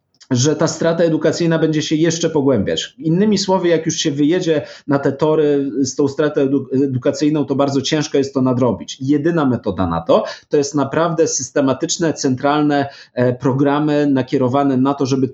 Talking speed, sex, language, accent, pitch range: 160 wpm, male, Polish, native, 120-145 Hz